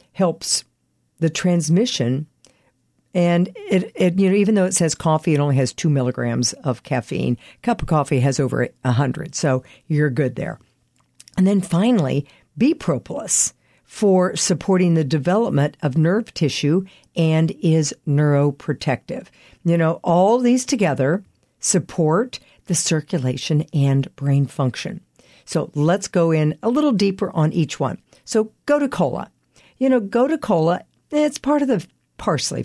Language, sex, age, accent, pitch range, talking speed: English, female, 50-69, American, 145-190 Hz, 145 wpm